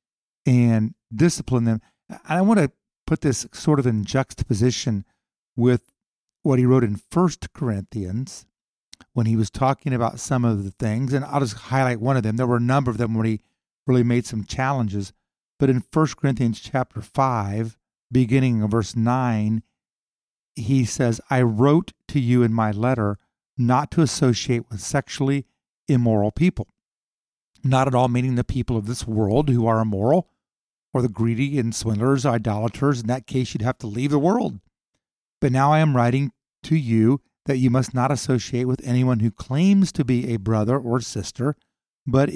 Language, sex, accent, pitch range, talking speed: English, male, American, 115-140 Hz, 175 wpm